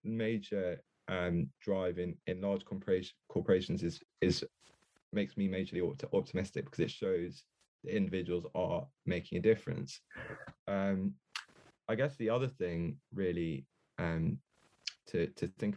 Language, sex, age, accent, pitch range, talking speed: English, male, 20-39, British, 90-105 Hz, 125 wpm